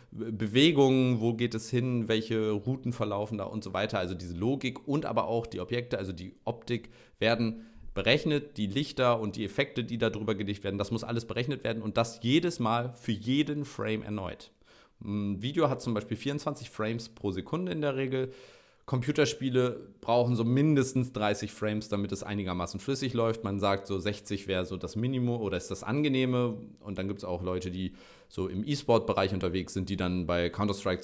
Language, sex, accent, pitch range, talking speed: German, male, German, 100-130 Hz, 190 wpm